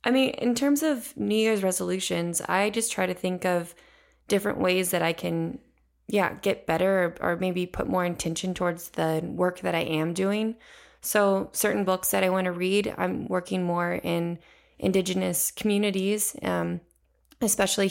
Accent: American